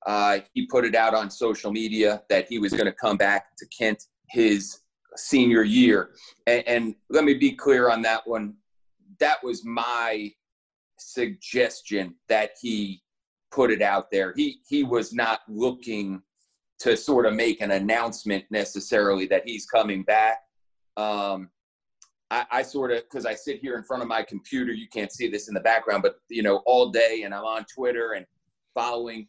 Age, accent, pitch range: 30-49, American, 105-125 Hz